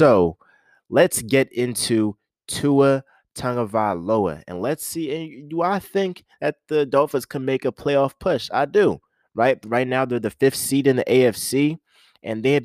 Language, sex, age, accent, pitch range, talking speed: English, male, 20-39, American, 110-135 Hz, 170 wpm